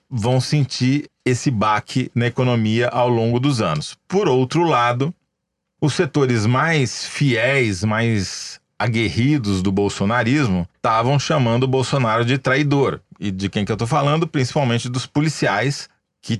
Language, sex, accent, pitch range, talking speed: Portuguese, male, Brazilian, 115-140 Hz, 140 wpm